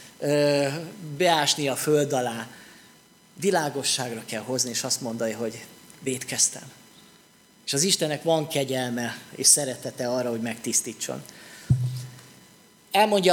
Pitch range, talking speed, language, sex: 140-180 Hz, 105 wpm, Hungarian, male